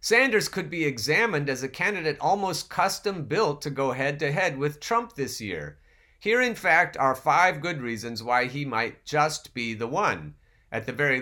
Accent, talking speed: American, 175 wpm